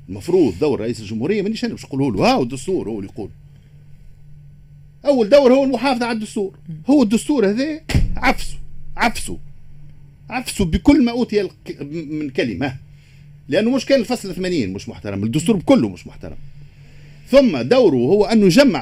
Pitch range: 140-220 Hz